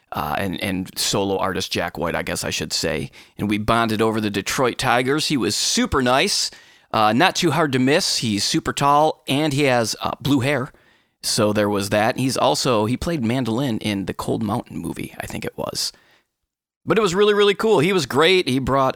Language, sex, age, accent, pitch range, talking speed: English, male, 30-49, American, 100-130 Hz, 210 wpm